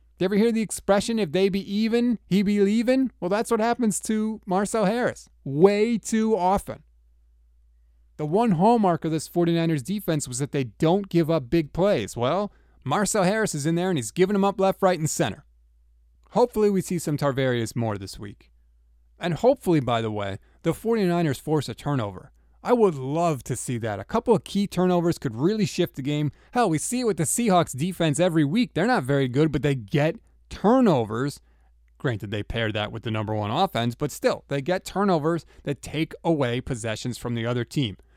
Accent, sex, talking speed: American, male, 200 wpm